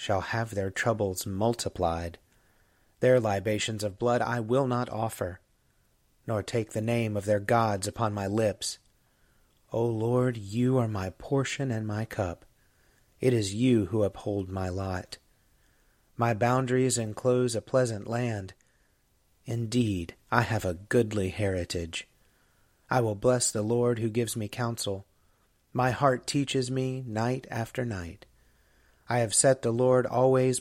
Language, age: English, 30-49